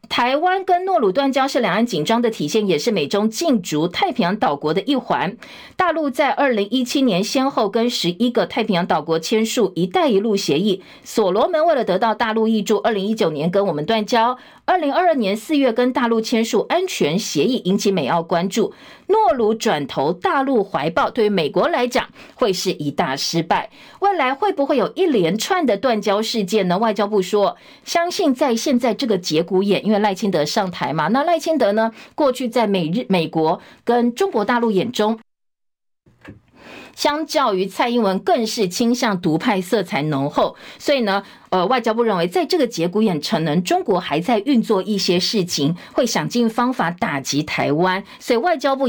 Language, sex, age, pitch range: Chinese, female, 50-69, 190-260 Hz